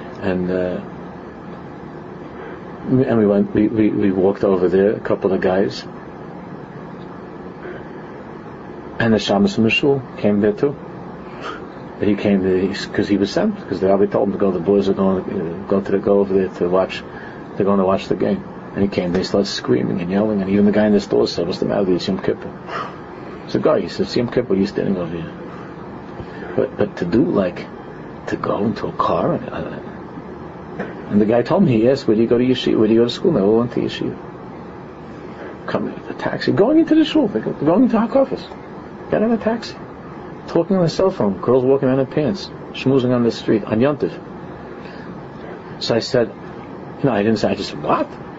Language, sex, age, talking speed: English, male, 50-69, 210 wpm